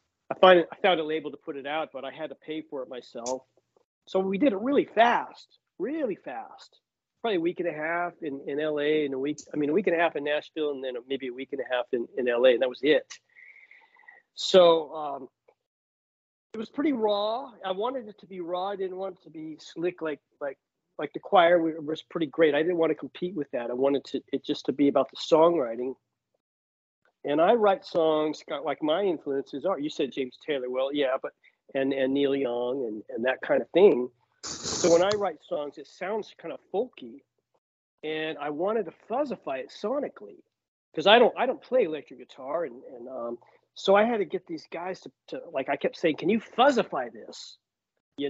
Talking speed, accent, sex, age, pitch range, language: 220 wpm, American, male, 40-59, 140-195 Hz, English